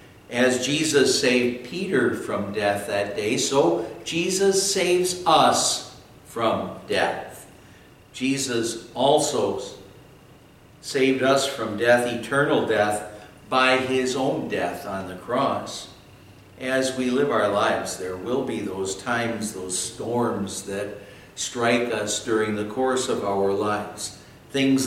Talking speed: 125 wpm